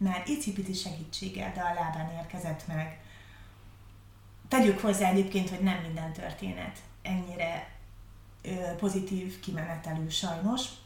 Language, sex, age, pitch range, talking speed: Hungarian, female, 30-49, 160-205 Hz, 110 wpm